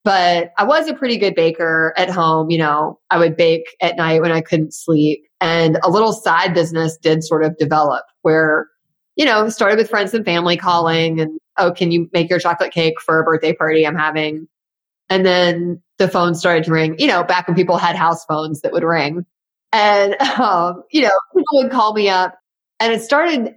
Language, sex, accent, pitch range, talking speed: English, female, American, 165-215 Hz, 210 wpm